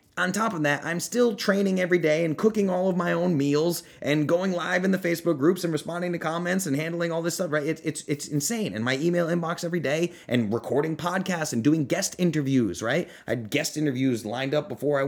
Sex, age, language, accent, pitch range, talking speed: male, 30-49, English, American, 110-160 Hz, 240 wpm